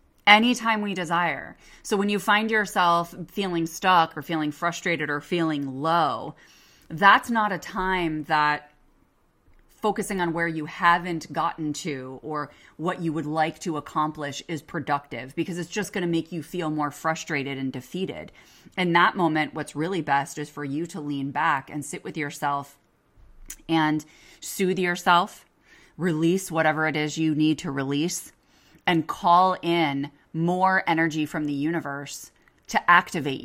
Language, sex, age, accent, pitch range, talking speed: English, female, 30-49, American, 150-185 Hz, 155 wpm